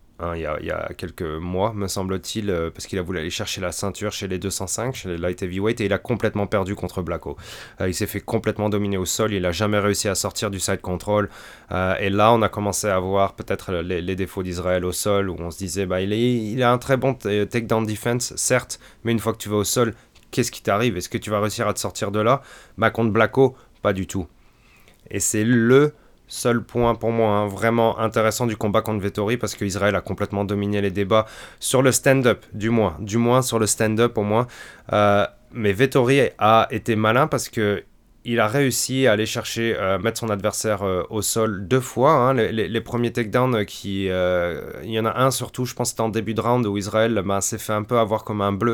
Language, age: French, 30-49